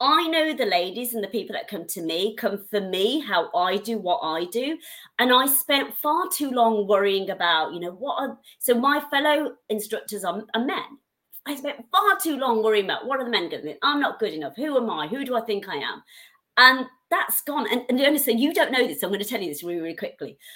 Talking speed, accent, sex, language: 245 wpm, British, female, English